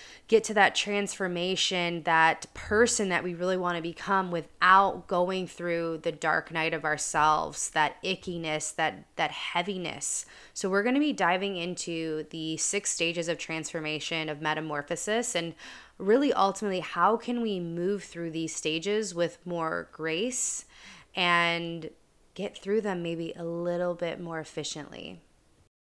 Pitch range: 160-185 Hz